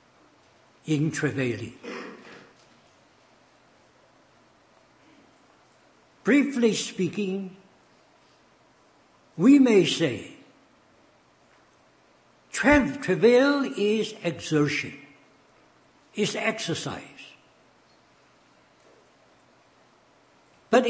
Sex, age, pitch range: male, 60-79, 145-230 Hz